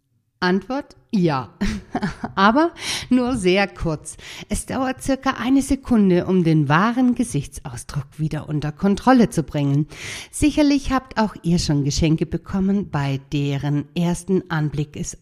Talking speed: 125 wpm